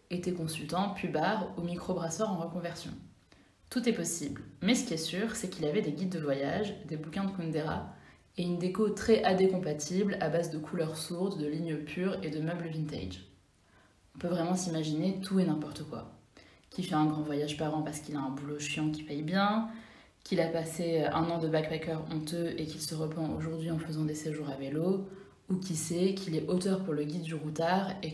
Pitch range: 155-190 Hz